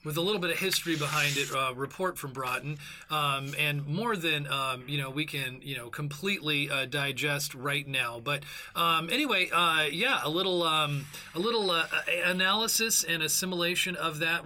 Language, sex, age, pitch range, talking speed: English, male, 30-49, 145-180 Hz, 185 wpm